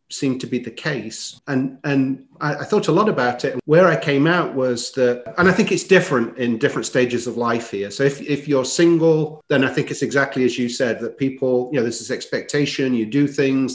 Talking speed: 235 wpm